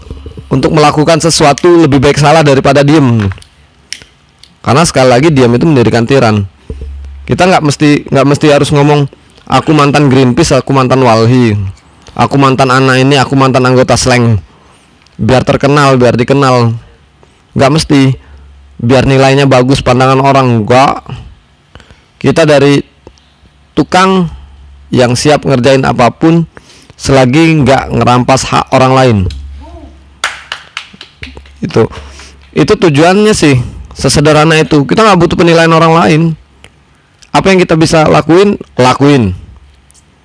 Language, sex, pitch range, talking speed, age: Indonesian, male, 105-160 Hz, 120 wpm, 20-39